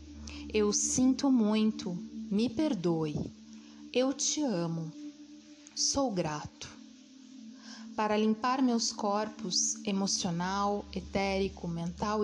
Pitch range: 180-255 Hz